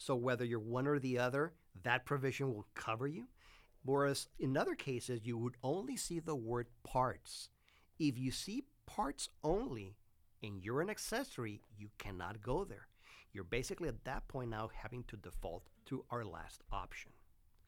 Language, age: English, 50-69